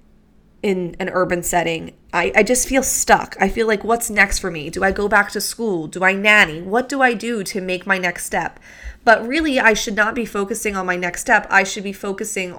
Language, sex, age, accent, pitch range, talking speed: English, female, 20-39, American, 180-215 Hz, 235 wpm